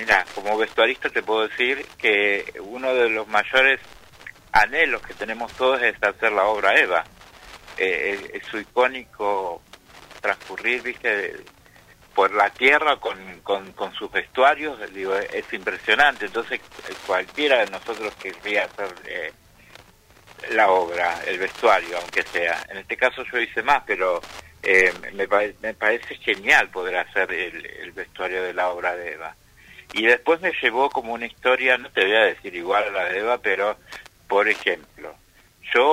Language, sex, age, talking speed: Spanish, male, 60-79, 160 wpm